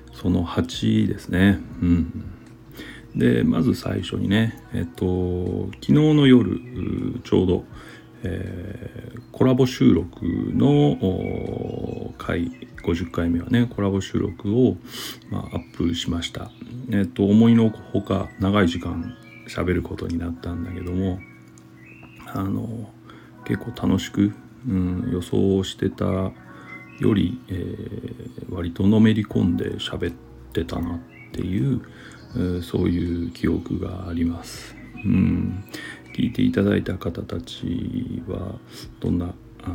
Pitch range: 85-110 Hz